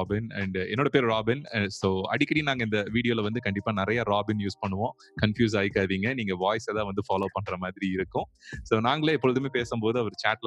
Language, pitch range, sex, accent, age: Tamil, 100-120 Hz, male, native, 30-49